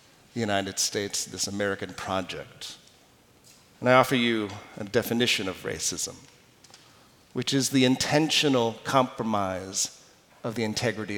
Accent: American